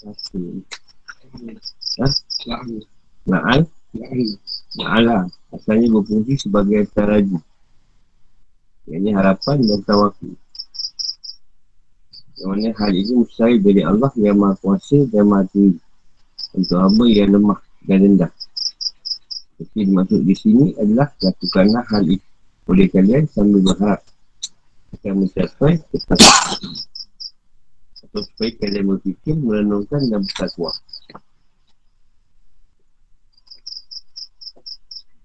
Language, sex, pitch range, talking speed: Malay, male, 95-120 Hz, 90 wpm